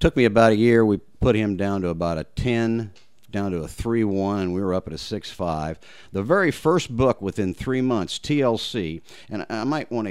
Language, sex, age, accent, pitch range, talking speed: English, male, 50-69, American, 90-125 Hz, 215 wpm